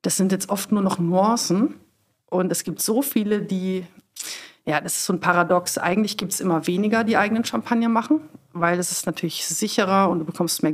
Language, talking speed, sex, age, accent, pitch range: German, 205 wpm, female, 40-59, German, 165-200 Hz